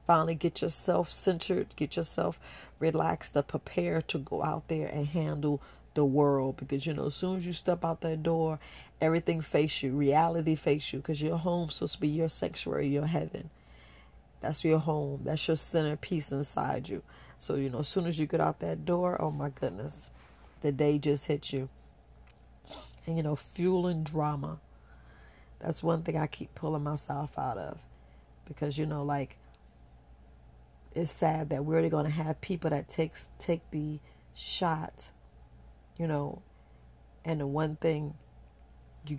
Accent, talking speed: American, 170 wpm